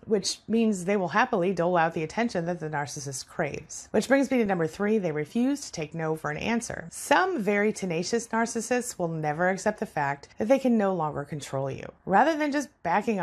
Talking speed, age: 215 wpm, 30-49